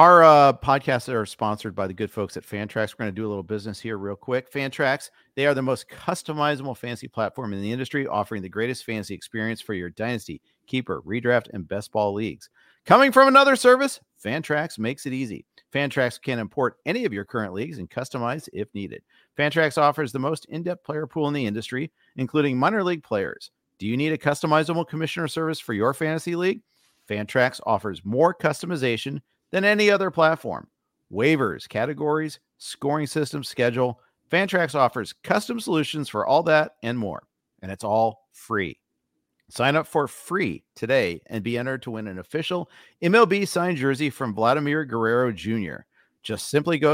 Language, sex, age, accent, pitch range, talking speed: English, male, 50-69, American, 110-155 Hz, 180 wpm